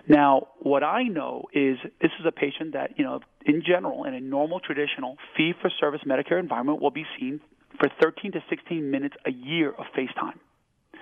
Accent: American